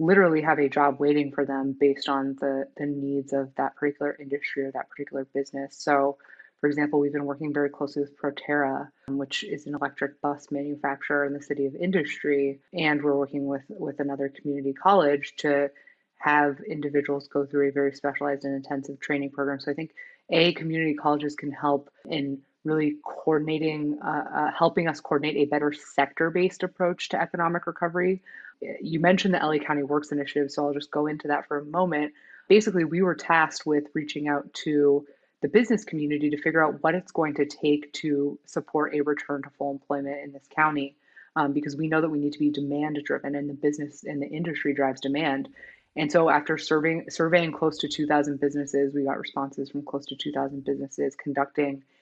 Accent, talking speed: American, 190 wpm